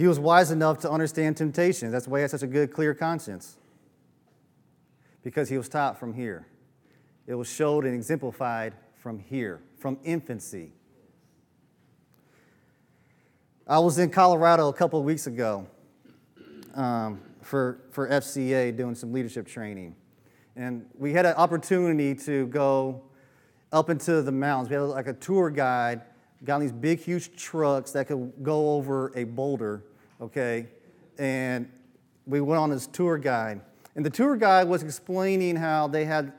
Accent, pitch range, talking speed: American, 125-160 Hz, 155 wpm